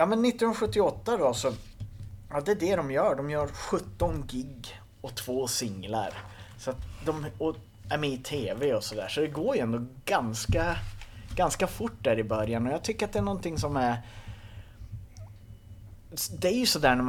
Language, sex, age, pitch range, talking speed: Swedish, male, 30-49, 110-160 Hz, 185 wpm